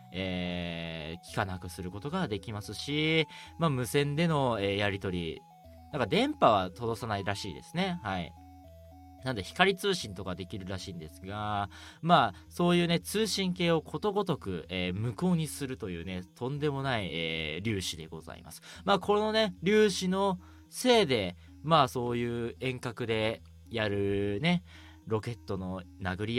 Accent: native